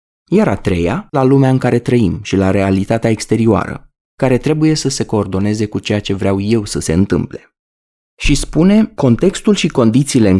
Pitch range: 100-150 Hz